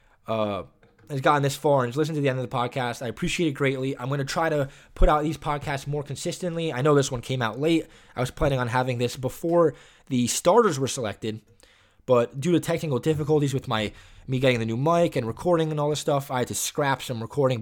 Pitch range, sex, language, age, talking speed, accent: 125-160 Hz, male, English, 20-39, 240 wpm, American